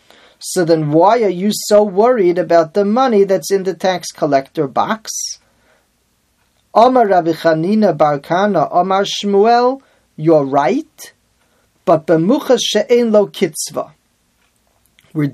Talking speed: 115 wpm